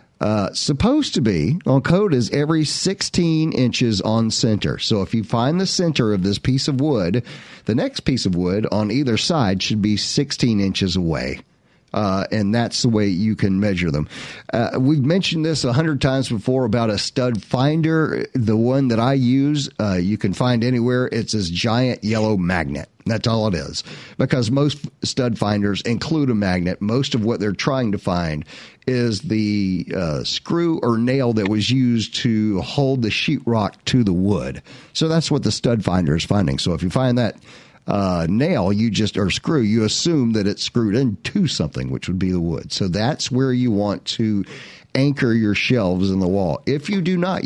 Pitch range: 100-130 Hz